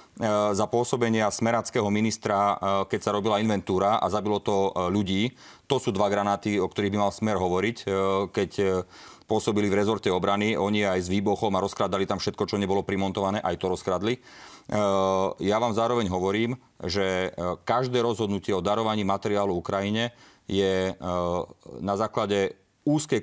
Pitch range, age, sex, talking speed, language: 100-115 Hz, 30-49, male, 145 wpm, Slovak